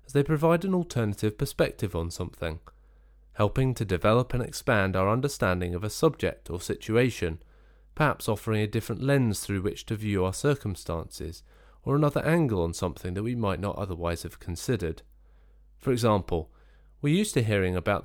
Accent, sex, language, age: British, male, English, 30-49